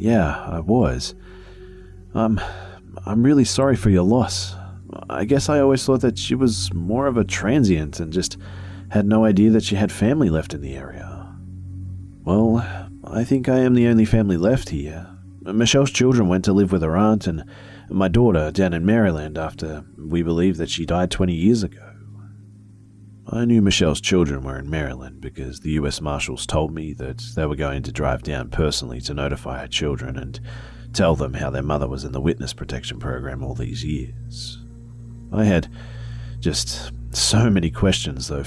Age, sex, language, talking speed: 40-59, male, English, 180 wpm